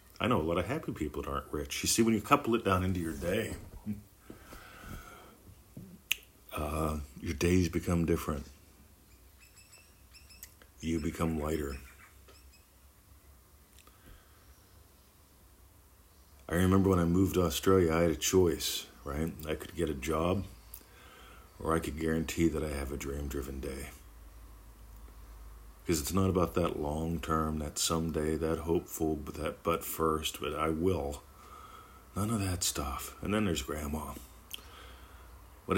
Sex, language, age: male, English, 50-69